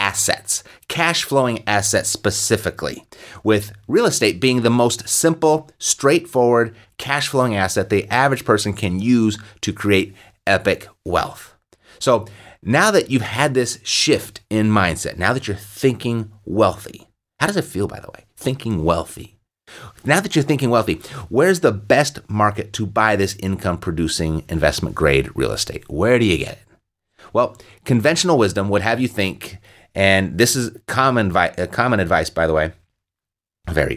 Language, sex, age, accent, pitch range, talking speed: English, male, 30-49, American, 95-120 Hz, 155 wpm